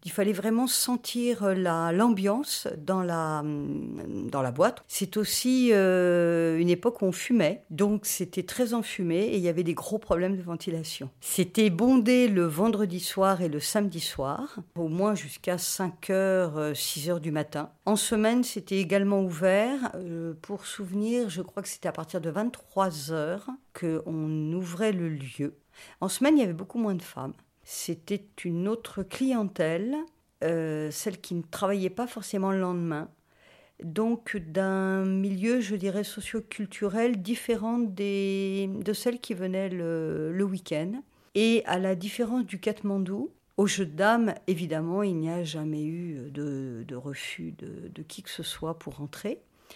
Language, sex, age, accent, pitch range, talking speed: French, female, 50-69, French, 170-215 Hz, 160 wpm